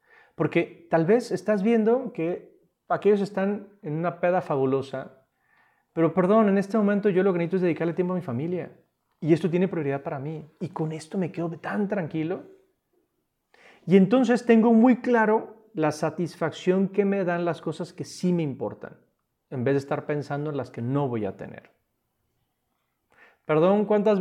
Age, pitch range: 40-59, 140-195 Hz